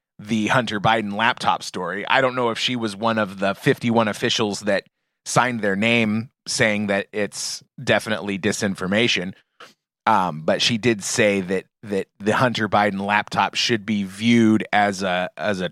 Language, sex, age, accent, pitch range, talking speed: English, male, 30-49, American, 100-120 Hz, 165 wpm